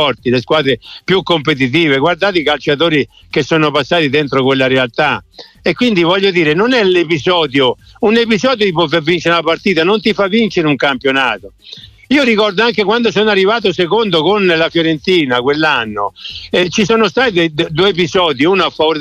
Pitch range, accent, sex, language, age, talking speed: 155-205 Hz, native, male, Italian, 50-69, 165 wpm